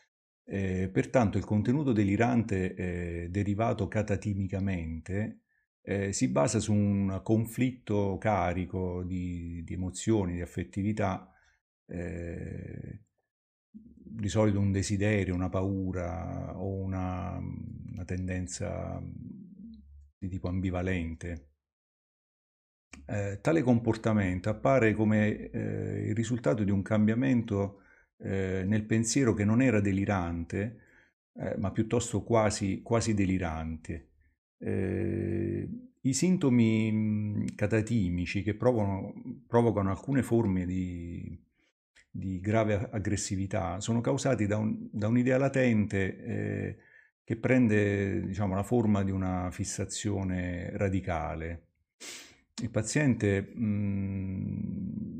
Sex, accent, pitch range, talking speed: male, native, 90-110 Hz, 95 wpm